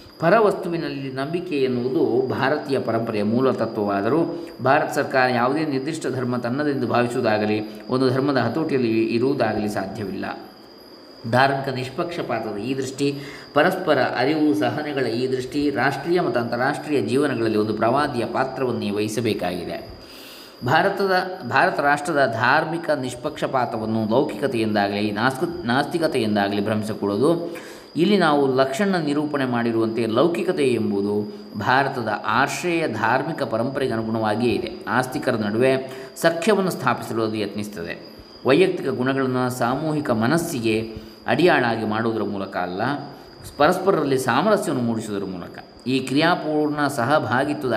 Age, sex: 20-39, male